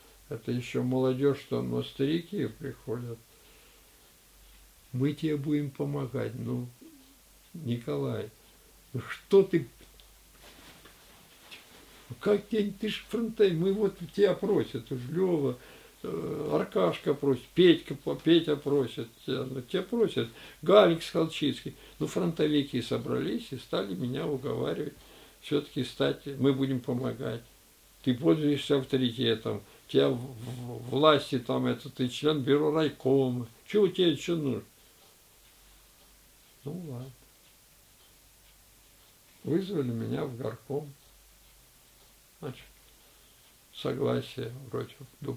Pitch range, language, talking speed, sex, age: 120-160 Hz, Russian, 95 wpm, male, 60-79